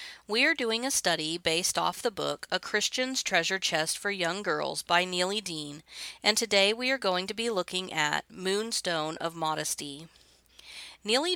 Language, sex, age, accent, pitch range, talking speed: English, female, 40-59, American, 165-220 Hz, 170 wpm